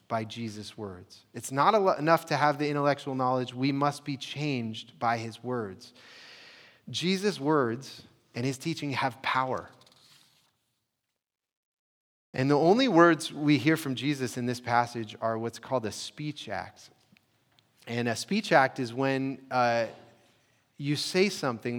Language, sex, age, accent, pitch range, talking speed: English, male, 30-49, American, 110-135 Hz, 145 wpm